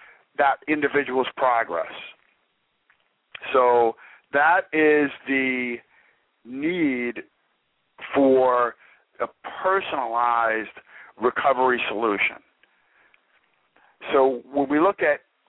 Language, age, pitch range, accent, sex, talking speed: English, 50-69, 125-155 Hz, American, male, 70 wpm